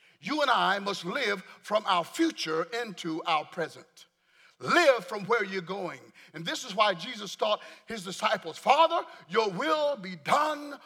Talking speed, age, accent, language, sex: 160 wpm, 50-69, American, English, male